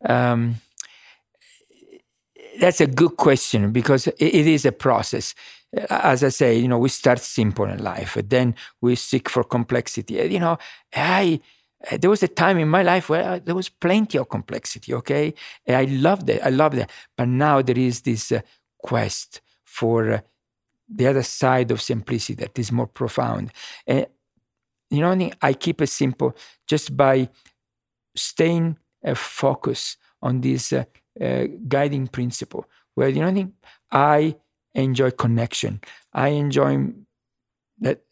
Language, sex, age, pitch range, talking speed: English, male, 50-69, 120-160 Hz, 155 wpm